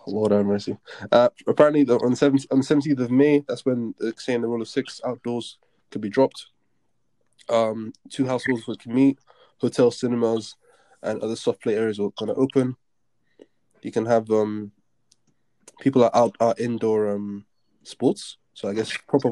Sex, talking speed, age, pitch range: male, 170 wpm, 20-39, 110-135 Hz